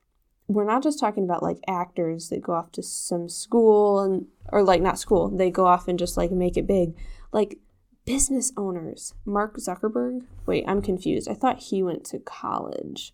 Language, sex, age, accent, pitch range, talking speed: English, female, 10-29, American, 155-220 Hz, 185 wpm